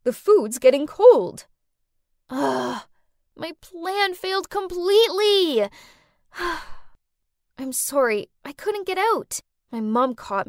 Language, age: English, 10-29